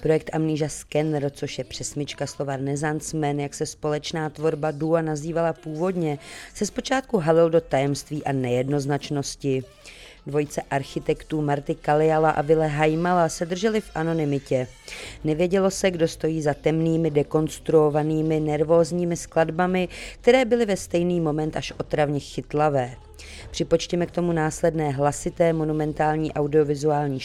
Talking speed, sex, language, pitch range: 125 wpm, female, Czech, 145-165 Hz